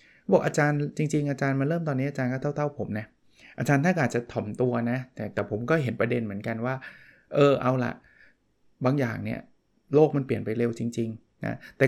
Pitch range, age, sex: 115-145 Hz, 20-39, male